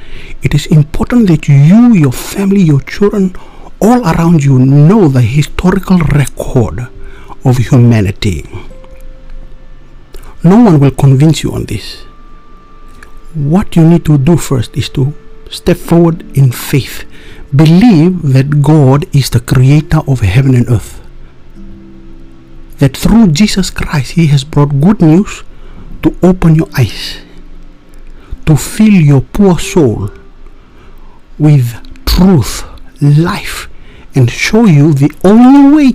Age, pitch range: 60-79, 115-160 Hz